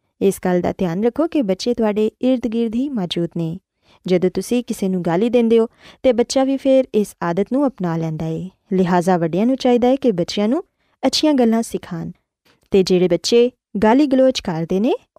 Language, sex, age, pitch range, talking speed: Urdu, female, 20-39, 185-260 Hz, 170 wpm